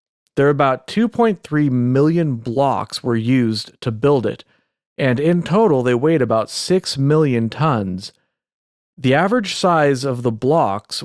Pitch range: 120-155 Hz